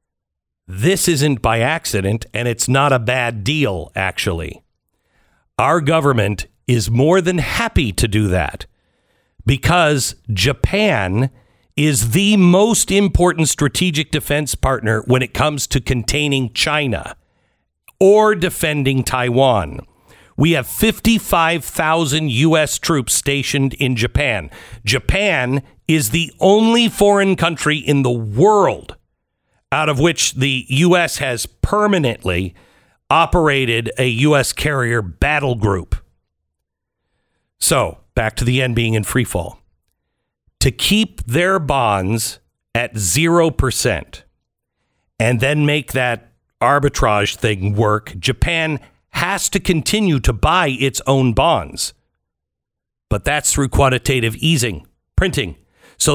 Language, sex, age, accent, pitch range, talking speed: English, male, 50-69, American, 115-160 Hz, 110 wpm